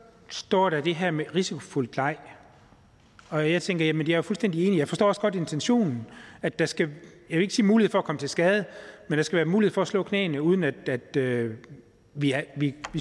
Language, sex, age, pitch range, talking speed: Danish, male, 30-49, 155-210 Hz, 235 wpm